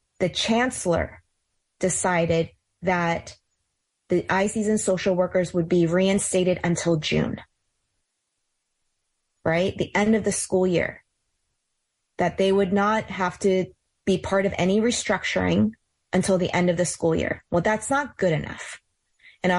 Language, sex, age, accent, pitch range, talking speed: English, female, 20-39, American, 175-200 Hz, 140 wpm